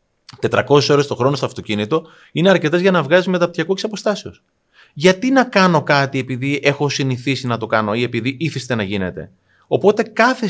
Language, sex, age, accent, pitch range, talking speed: Greek, male, 30-49, native, 125-190 Hz, 170 wpm